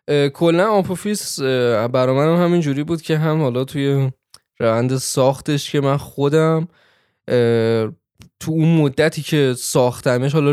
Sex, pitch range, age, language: male, 135-165 Hz, 10-29, Persian